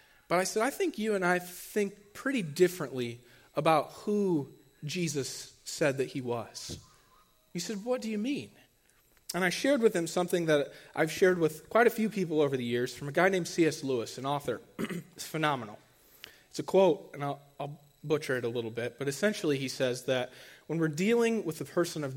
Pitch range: 135-190 Hz